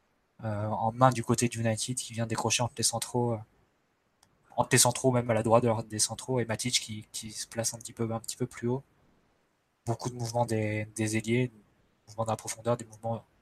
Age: 20-39